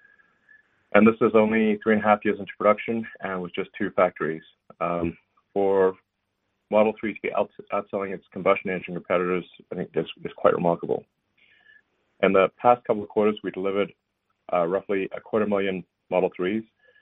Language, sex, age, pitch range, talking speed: English, male, 40-59, 95-125 Hz, 175 wpm